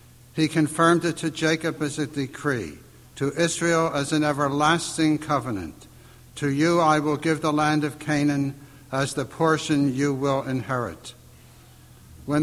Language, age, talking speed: English, 60-79, 145 wpm